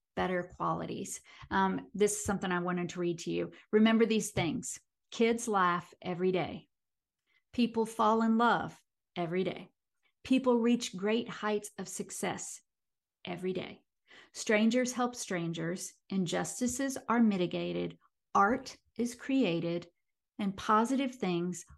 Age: 50-69